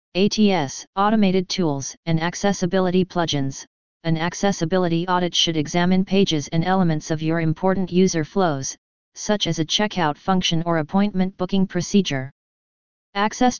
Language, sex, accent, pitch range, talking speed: English, female, American, 165-190 Hz, 130 wpm